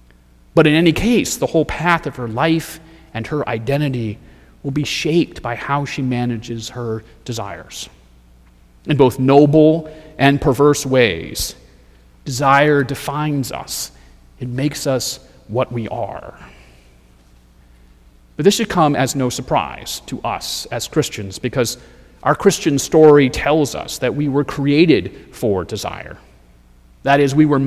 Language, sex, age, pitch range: English, male, 40-59, 105-145 Hz